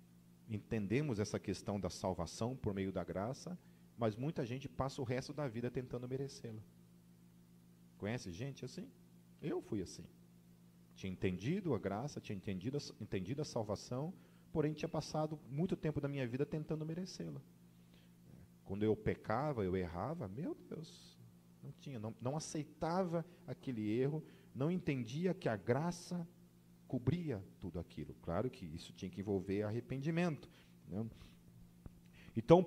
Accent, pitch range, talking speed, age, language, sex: Brazilian, 95-155 Hz, 140 wpm, 40-59, Portuguese, male